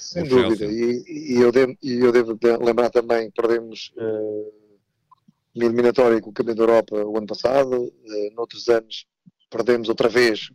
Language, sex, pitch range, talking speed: Portuguese, male, 115-130 Hz, 170 wpm